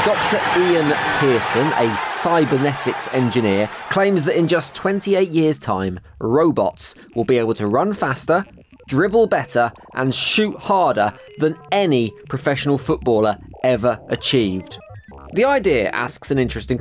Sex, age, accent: male, 20-39, British